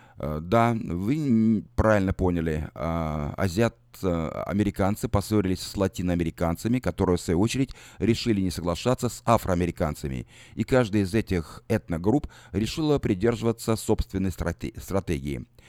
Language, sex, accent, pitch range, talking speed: Russian, male, native, 90-120 Hz, 100 wpm